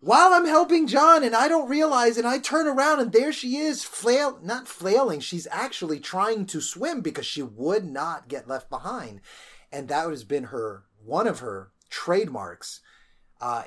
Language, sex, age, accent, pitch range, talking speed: English, male, 30-49, American, 120-165 Hz, 180 wpm